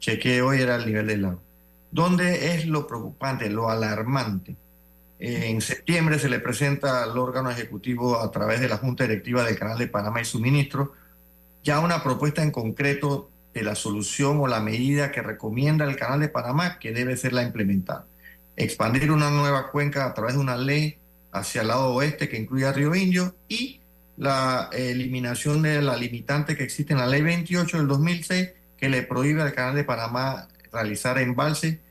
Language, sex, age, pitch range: Spanish, male, 40-59, 110-150 Hz